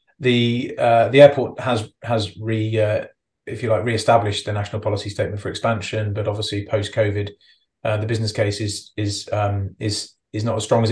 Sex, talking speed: male, 190 wpm